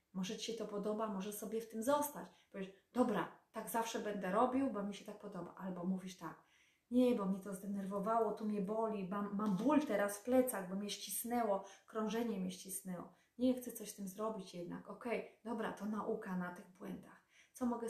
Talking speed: 200 wpm